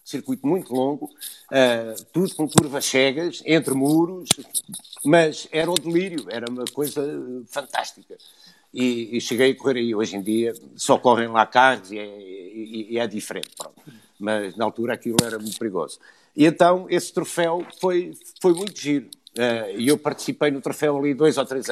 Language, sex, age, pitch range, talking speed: Portuguese, male, 60-79, 125-165 Hz, 175 wpm